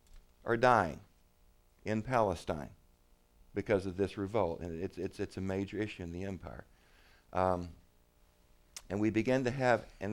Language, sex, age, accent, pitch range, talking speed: English, male, 50-69, American, 85-110 Hz, 150 wpm